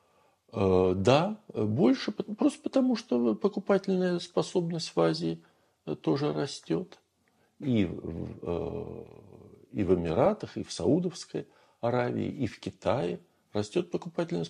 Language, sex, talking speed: Russian, male, 100 wpm